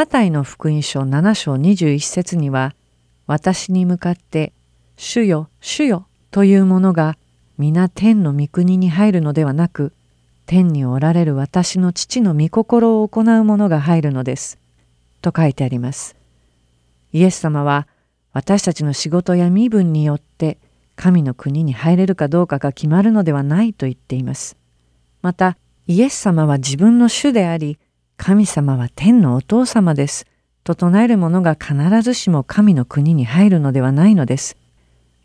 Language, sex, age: Japanese, female, 50-69